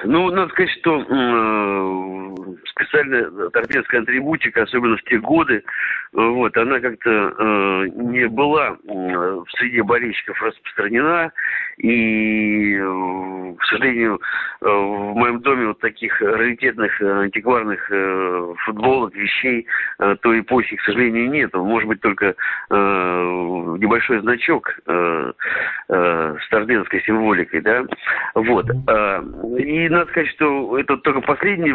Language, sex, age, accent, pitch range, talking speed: Russian, male, 50-69, native, 100-125 Hz, 125 wpm